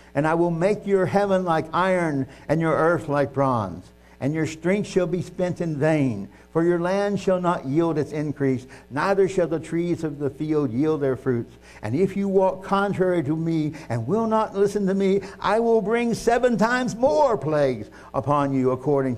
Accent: American